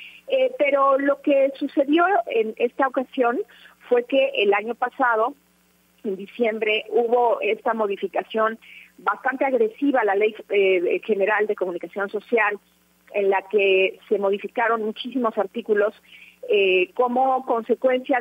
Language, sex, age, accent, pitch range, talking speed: Spanish, female, 40-59, Mexican, 200-270 Hz, 125 wpm